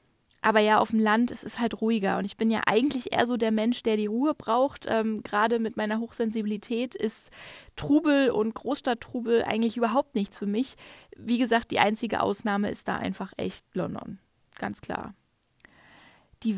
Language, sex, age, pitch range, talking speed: German, female, 10-29, 210-245 Hz, 175 wpm